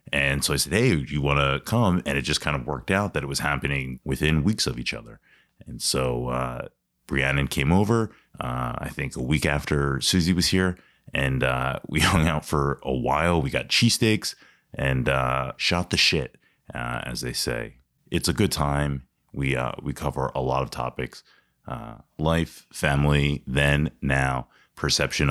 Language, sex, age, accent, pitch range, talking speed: English, male, 30-49, American, 65-80 Hz, 185 wpm